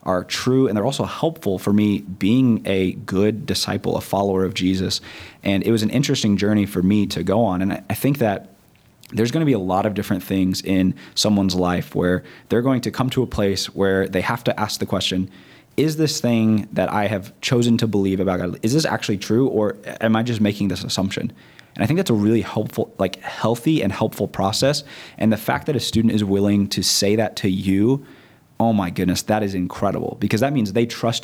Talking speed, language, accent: 220 wpm, English, American